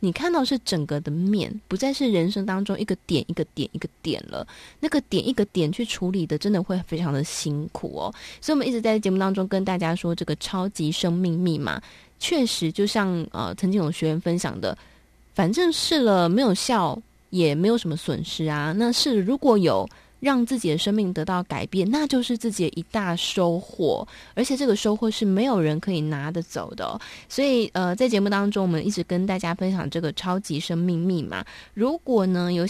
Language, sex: Chinese, female